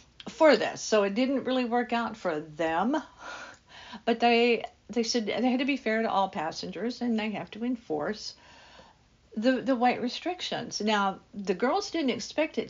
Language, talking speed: English, 175 wpm